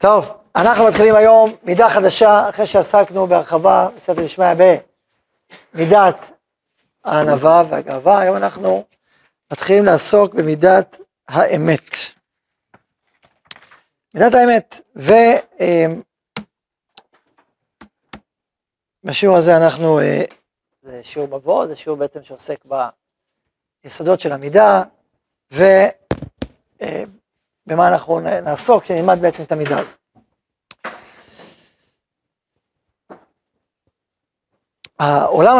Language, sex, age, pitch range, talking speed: Hebrew, male, 40-59, 150-205 Hz, 80 wpm